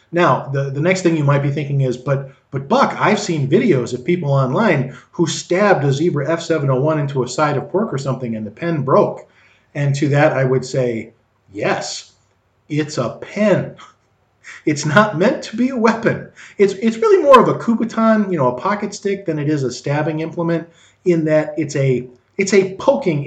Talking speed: 200 wpm